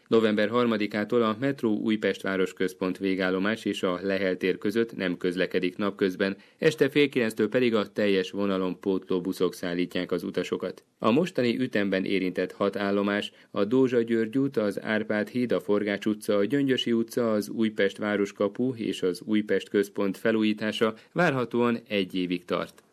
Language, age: Hungarian, 30-49